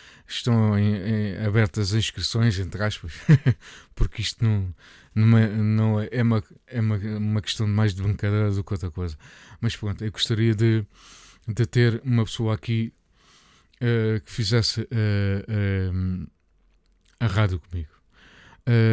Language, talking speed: Portuguese, 150 wpm